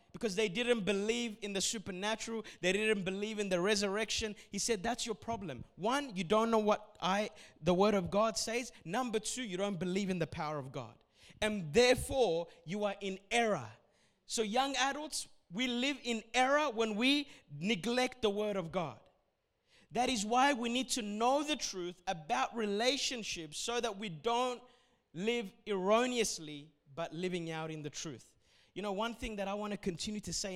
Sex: male